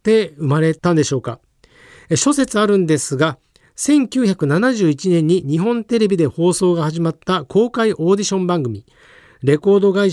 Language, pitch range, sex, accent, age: Japanese, 160-205 Hz, male, native, 50-69